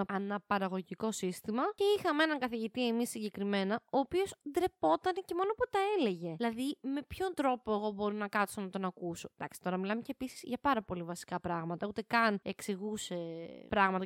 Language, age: Greek, 20-39